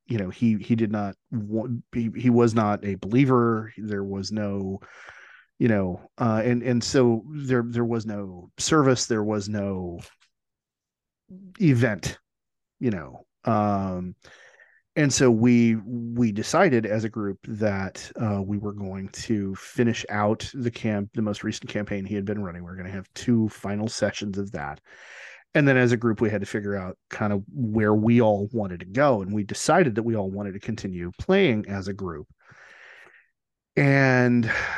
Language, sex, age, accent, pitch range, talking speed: English, male, 30-49, American, 100-120 Hz, 175 wpm